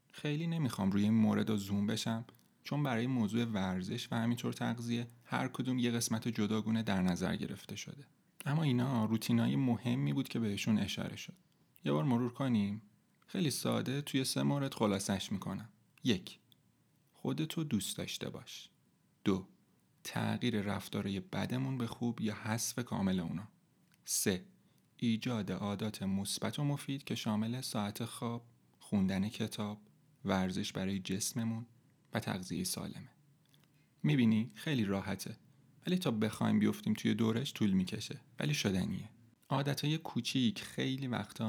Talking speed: 135 wpm